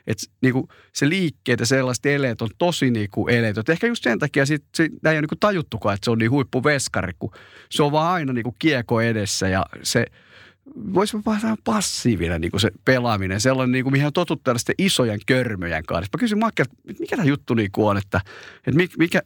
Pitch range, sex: 105-145 Hz, male